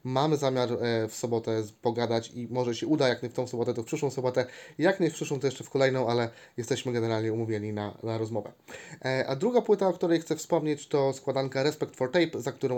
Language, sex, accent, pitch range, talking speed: Polish, male, native, 125-145 Hz, 220 wpm